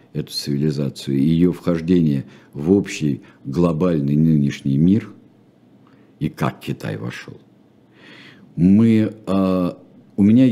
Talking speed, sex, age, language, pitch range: 90 wpm, male, 50-69, Russian, 80-110 Hz